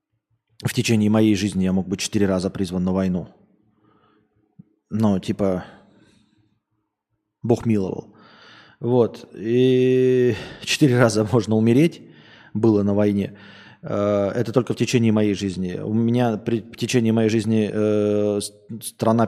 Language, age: Russian, 20-39